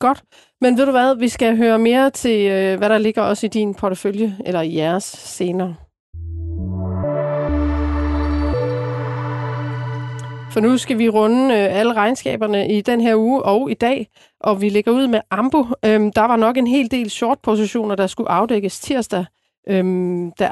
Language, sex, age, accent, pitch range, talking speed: Danish, female, 30-49, native, 185-230 Hz, 155 wpm